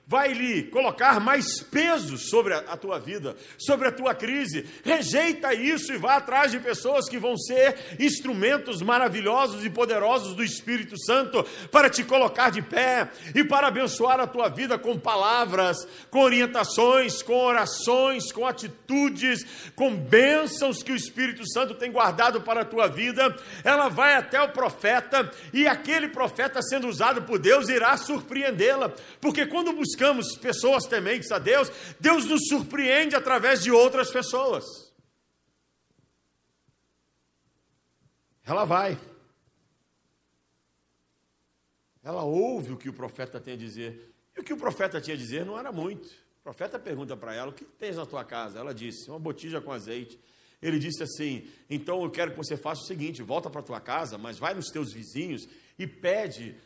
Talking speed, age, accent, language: 160 wpm, 50-69, Brazilian, Portuguese